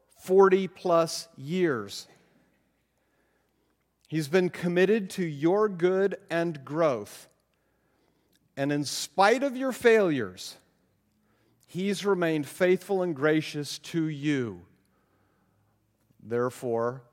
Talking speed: 90 wpm